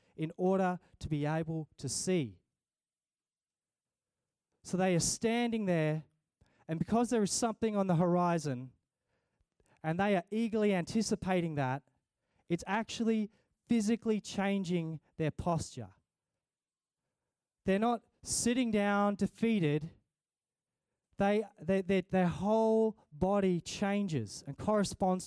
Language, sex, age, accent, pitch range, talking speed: English, male, 20-39, Australian, 160-210 Hz, 110 wpm